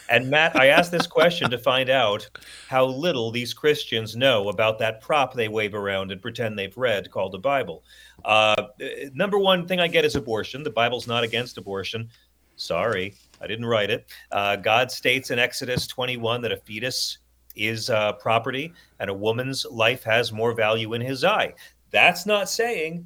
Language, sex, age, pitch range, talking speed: English, male, 40-59, 110-165 Hz, 180 wpm